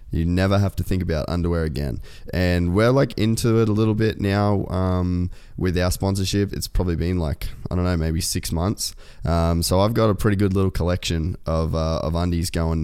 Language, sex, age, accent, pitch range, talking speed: English, male, 20-39, Australian, 80-95 Hz, 210 wpm